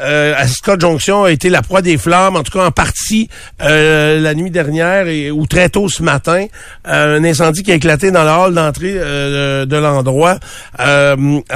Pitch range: 150-185 Hz